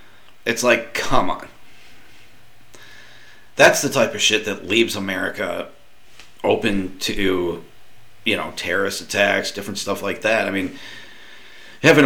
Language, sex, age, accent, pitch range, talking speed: English, male, 40-59, American, 105-130 Hz, 125 wpm